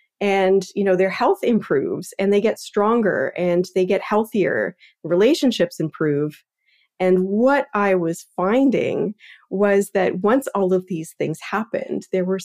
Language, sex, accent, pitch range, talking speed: English, female, American, 175-220 Hz, 150 wpm